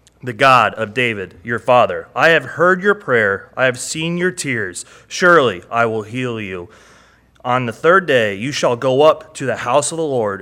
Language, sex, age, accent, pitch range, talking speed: English, male, 30-49, American, 105-125 Hz, 200 wpm